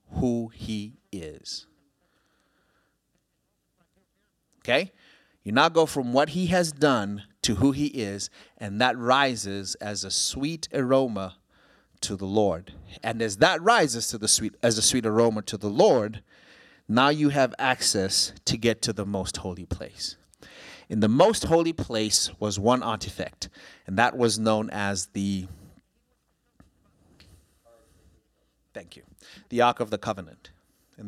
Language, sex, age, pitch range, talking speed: English, male, 30-49, 100-130 Hz, 140 wpm